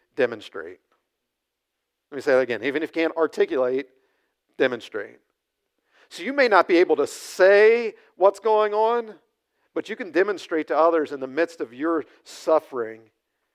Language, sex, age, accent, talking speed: English, male, 50-69, American, 155 wpm